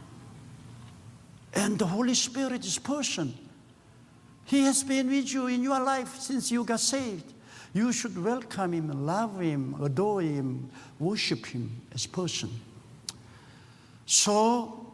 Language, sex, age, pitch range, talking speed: English, male, 60-79, 135-215 Hz, 125 wpm